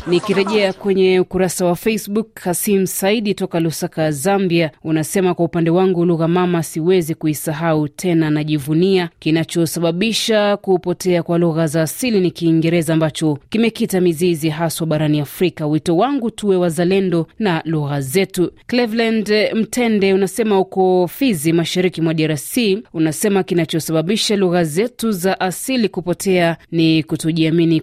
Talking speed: 125 wpm